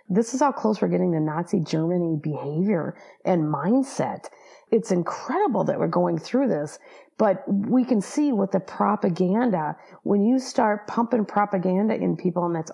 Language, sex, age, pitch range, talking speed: English, female, 40-59, 180-245 Hz, 165 wpm